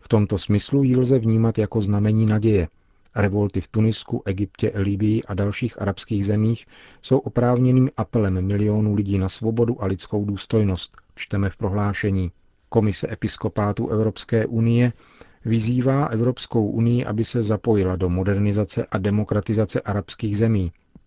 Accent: native